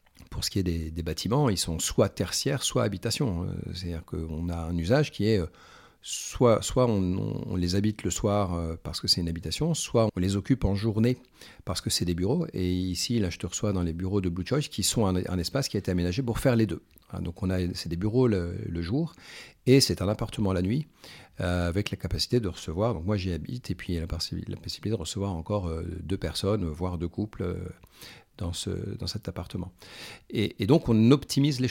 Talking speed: 225 wpm